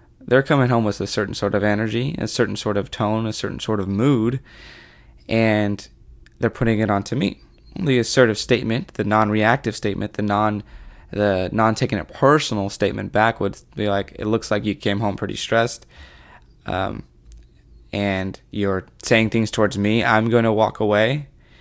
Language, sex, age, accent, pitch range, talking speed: English, male, 20-39, American, 100-115 Hz, 170 wpm